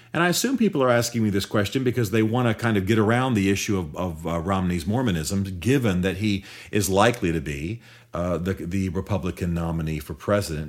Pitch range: 90-115 Hz